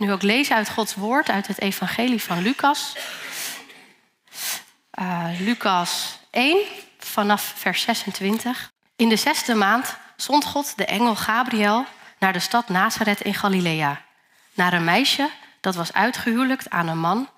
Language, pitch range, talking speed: Dutch, 180-245 Hz, 140 wpm